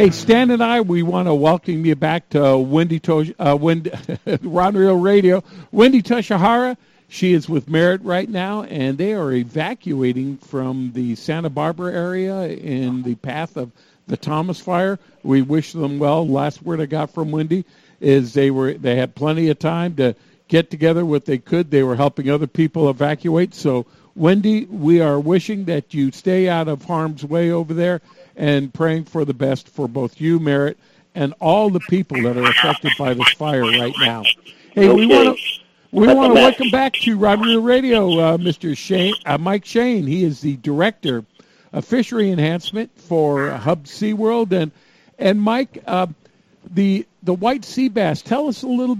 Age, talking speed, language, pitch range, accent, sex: 50-69, 180 wpm, English, 145-195 Hz, American, male